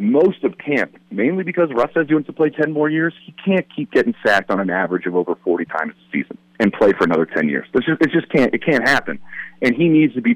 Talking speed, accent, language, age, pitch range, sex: 270 wpm, American, English, 40-59, 100-160 Hz, male